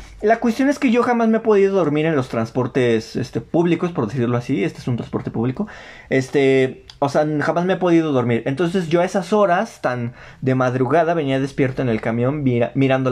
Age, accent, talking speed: 20-39, Mexican, 210 wpm